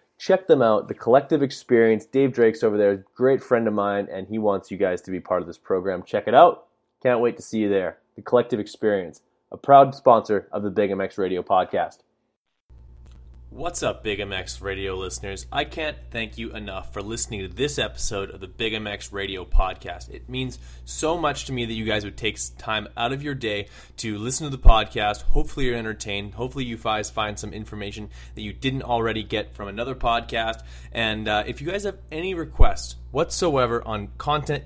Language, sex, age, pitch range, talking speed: English, male, 20-39, 100-130 Hz, 205 wpm